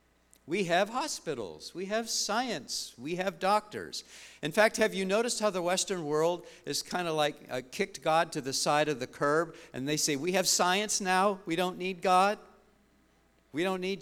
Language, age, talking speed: English, 50-69, 195 wpm